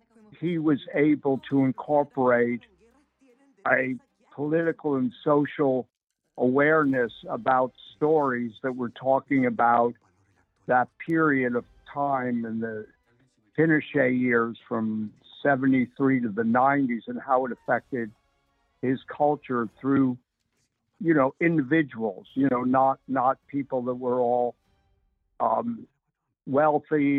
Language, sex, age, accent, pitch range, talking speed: English, male, 60-79, American, 120-150 Hz, 105 wpm